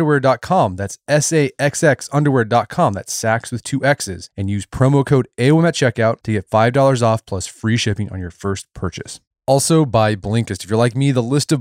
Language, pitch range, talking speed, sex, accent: English, 100-130 Hz, 185 wpm, male, American